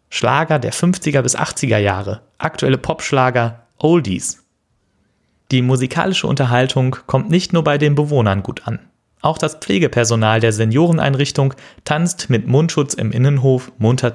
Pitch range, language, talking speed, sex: 115-145 Hz, German, 130 wpm, male